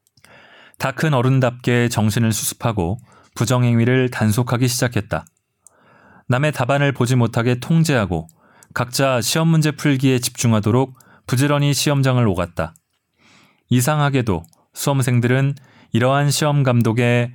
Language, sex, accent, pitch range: Korean, male, native, 110-135 Hz